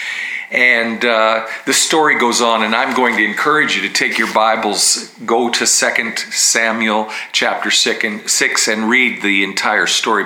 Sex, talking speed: male, 170 wpm